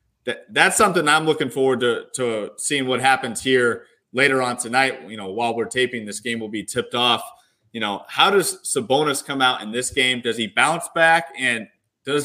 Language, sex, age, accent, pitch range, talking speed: English, male, 30-49, American, 115-150 Hz, 200 wpm